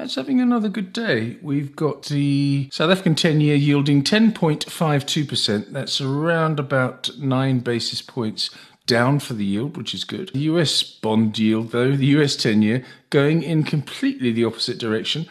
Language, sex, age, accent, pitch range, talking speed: English, male, 50-69, British, 120-150 Hz, 155 wpm